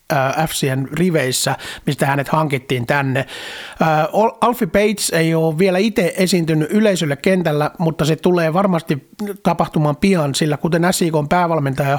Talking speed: 130 wpm